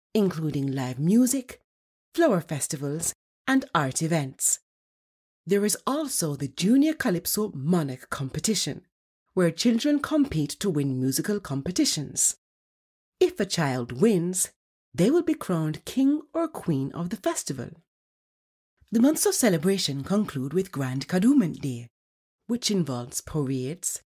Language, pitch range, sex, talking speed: English, 140-225 Hz, female, 120 wpm